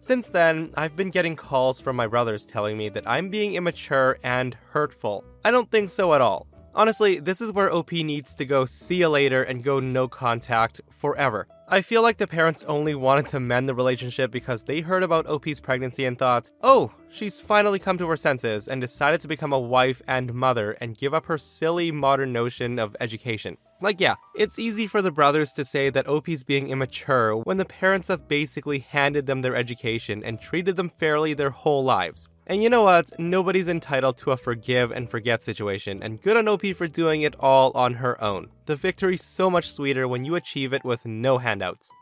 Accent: American